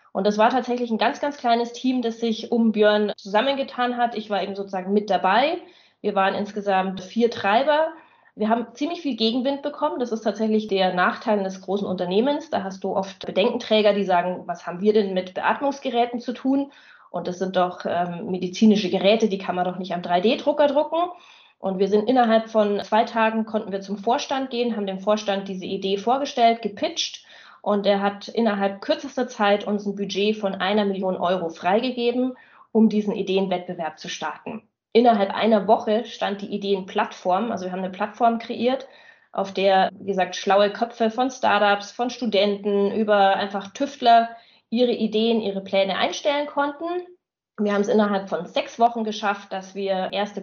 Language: German